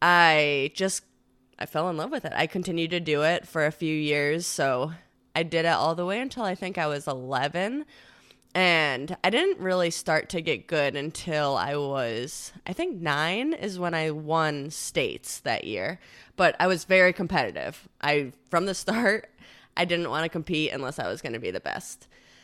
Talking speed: 195 wpm